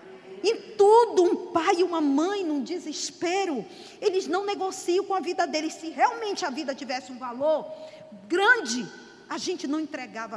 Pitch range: 245-360 Hz